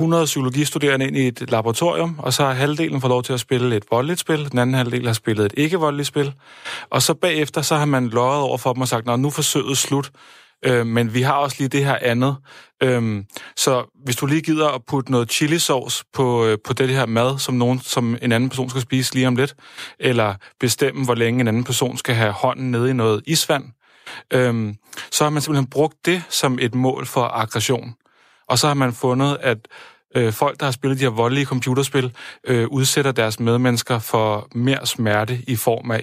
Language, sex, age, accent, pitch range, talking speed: Danish, male, 30-49, native, 120-140 Hz, 215 wpm